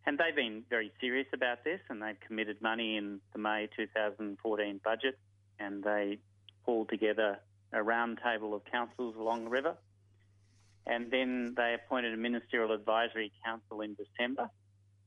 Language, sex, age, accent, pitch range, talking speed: English, male, 30-49, Australian, 100-115 Hz, 150 wpm